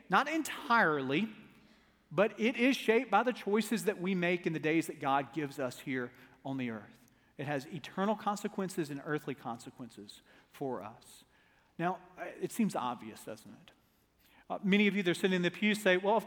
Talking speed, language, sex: 190 wpm, English, male